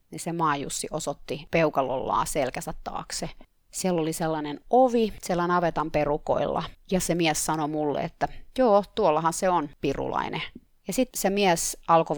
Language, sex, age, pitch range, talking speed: Finnish, female, 30-49, 160-200 Hz, 155 wpm